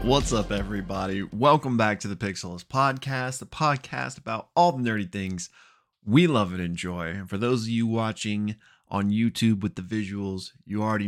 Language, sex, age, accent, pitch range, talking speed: English, male, 20-39, American, 100-120 Hz, 180 wpm